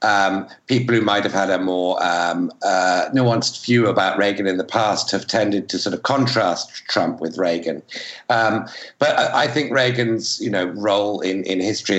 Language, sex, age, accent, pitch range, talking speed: English, male, 60-79, British, 95-120 Hz, 190 wpm